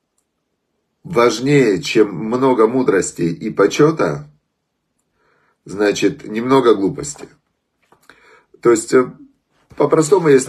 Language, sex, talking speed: Russian, male, 75 wpm